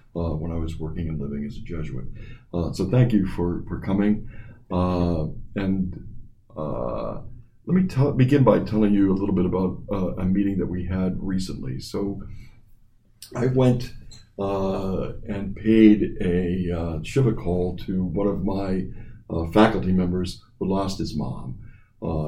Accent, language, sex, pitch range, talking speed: American, English, male, 90-110 Hz, 160 wpm